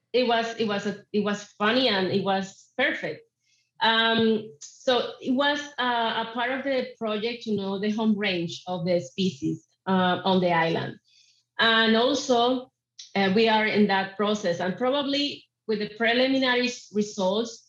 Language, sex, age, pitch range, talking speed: English, female, 30-49, 185-230 Hz, 165 wpm